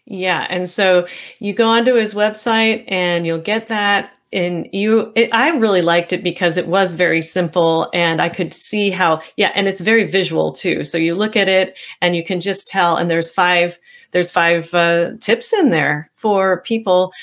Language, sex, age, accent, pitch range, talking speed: English, female, 40-59, American, 170-220 Hz, 195 wpm